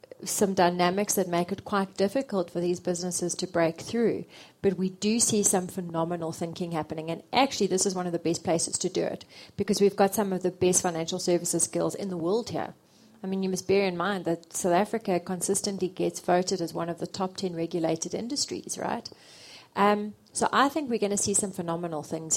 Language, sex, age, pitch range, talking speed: English, female, 30-49, 175-205 Hz, 215 wpm